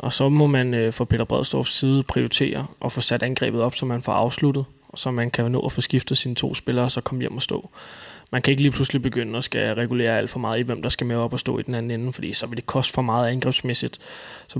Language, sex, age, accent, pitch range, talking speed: Danish, male, 20-39, native, 120-135 Hz, 285 wpm